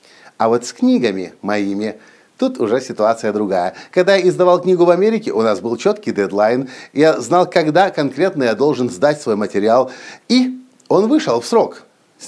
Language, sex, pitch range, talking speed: Russian, male, 115-175 Hz, 170 wpm